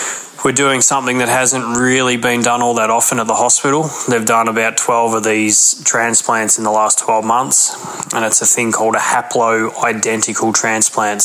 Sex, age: male, 20-39